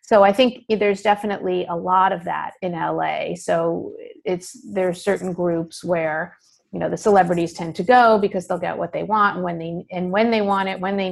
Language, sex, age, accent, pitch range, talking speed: English, female, 30-49, American, 180-215 Hz, 195 wpm